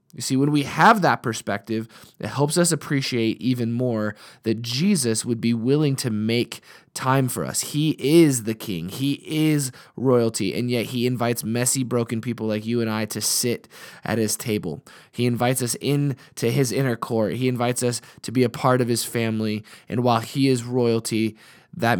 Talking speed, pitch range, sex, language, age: 190 wpm, 110-135 Hz, male, English, 20-39